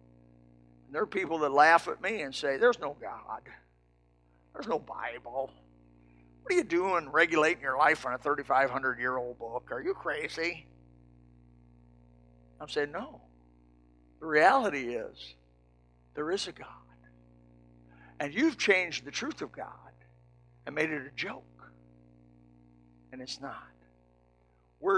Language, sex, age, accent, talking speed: English, male, 60-79, American, 135 wpm